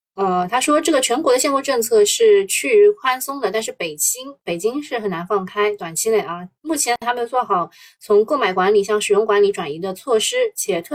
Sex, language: female, Chinese